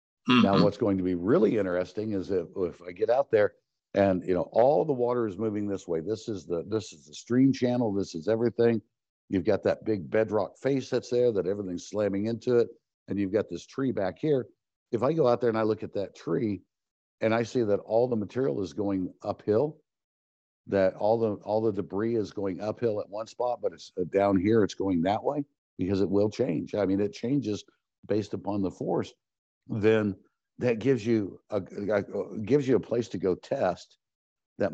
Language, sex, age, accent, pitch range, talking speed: English, male, 60-79, American, 95-120 Hz, 210 wpm